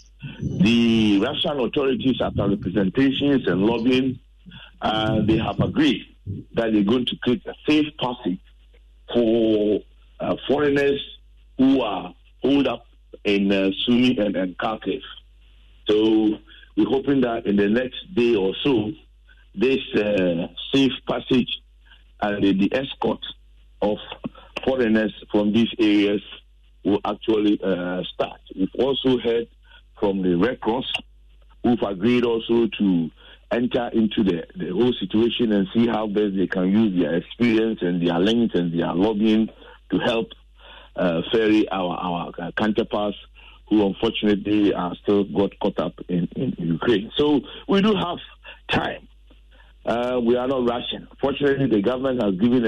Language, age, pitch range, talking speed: English, 50-69, 95-120 Hz, 140 wpm